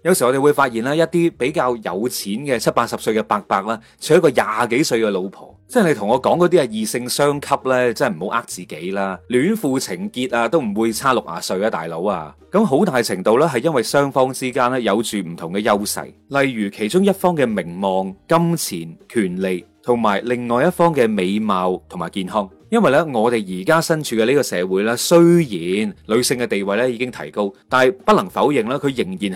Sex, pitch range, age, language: male, 110-165 Hz, 30-49, Chinese